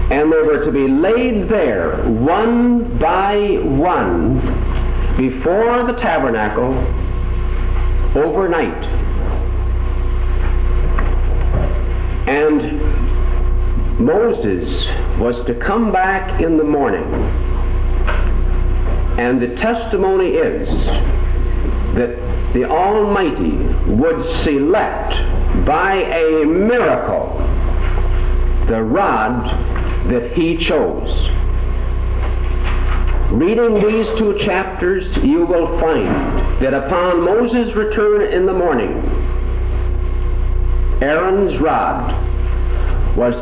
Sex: male